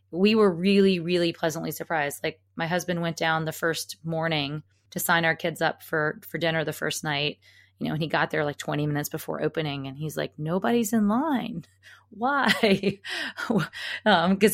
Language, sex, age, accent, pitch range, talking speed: English, female, 20-39, American, 150-185 Hz, 180 wpm